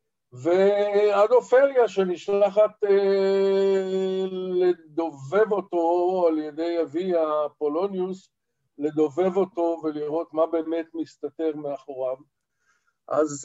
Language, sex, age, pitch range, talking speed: Hebrew, male, 50-69, 150-185 Hz, 75 wpm